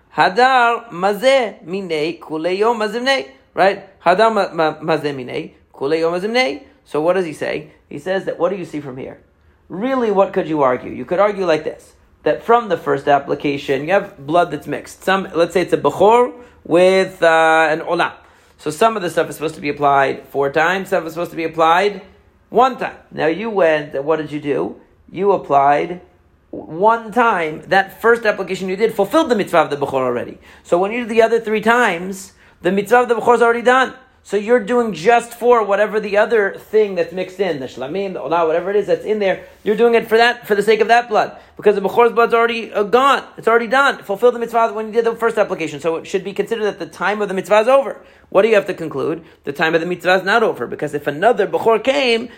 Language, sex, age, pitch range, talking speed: English, male, 40-59, 165-225 Hz, 220 wpm